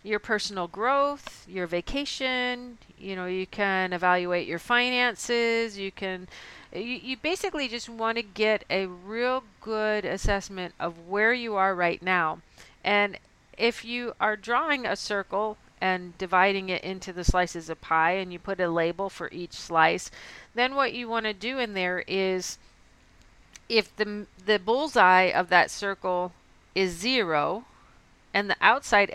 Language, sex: English, female